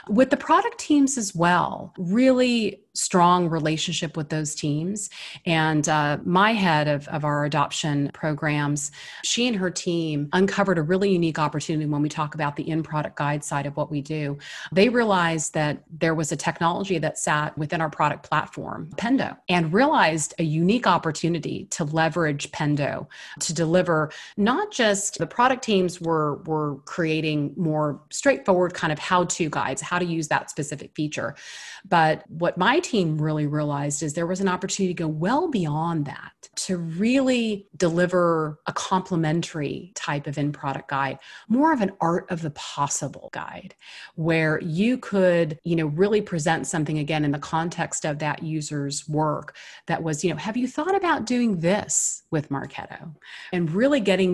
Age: 30-49